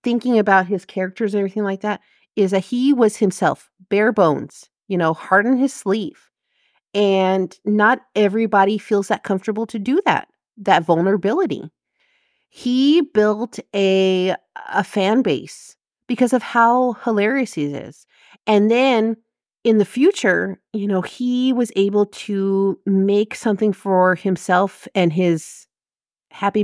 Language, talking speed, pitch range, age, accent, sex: English, 140 wpm, 175-225 Hz, 40-59, American, female